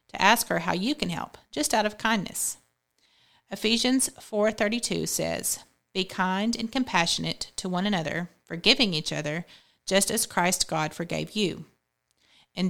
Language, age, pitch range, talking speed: English, 40-59, 170-210 Hz, 140 wpm